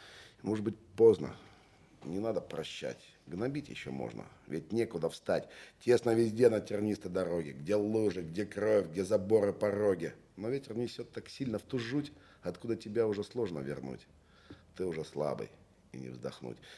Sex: male